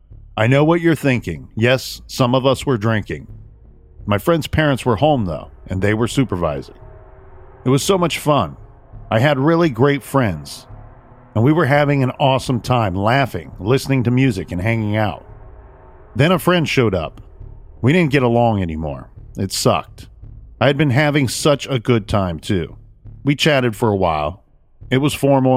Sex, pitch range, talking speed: male, 105-135 Hz, 175 wpm